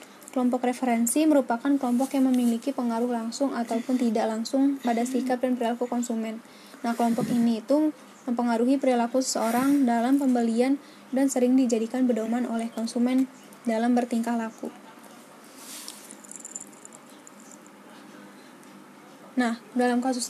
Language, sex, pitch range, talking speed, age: Indonesian, female, 235-260 Hz, 110 wpm, 10-29